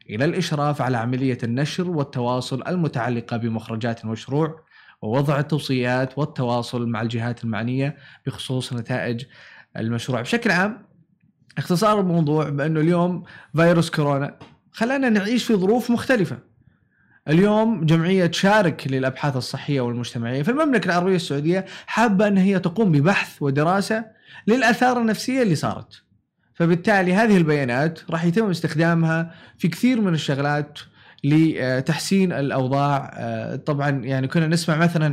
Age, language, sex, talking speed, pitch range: 20-39, Arabic, male, 115 wpm, 130-180 Hz